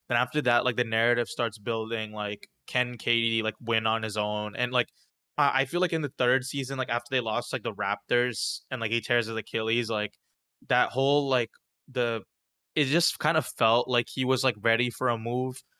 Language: English